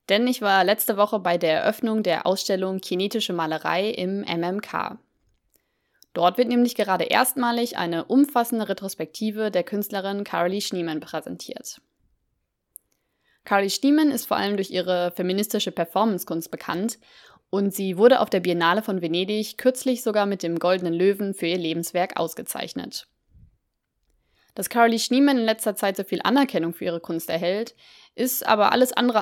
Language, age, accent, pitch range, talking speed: German, 20-39, German, 180-220 Hz, 150 wpm